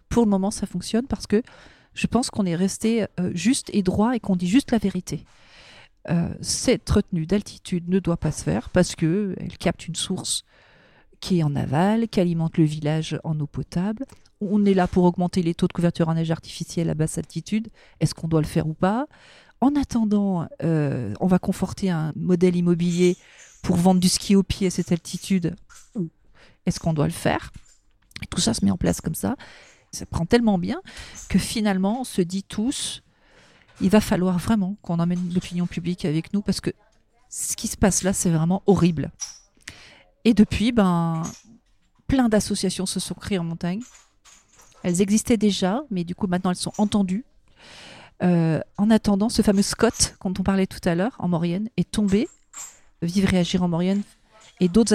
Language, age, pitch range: French, 40-59, 175-210 Hz